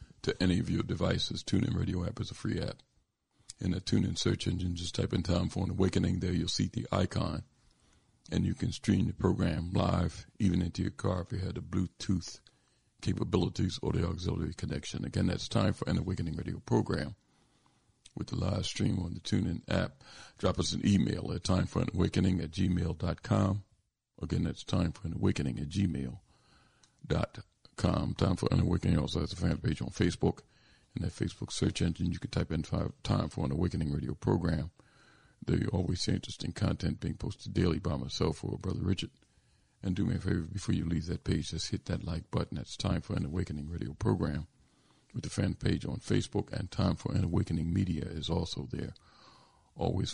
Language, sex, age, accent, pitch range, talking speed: English, male, 50-69, American, 85-100 Hz, 195 wpm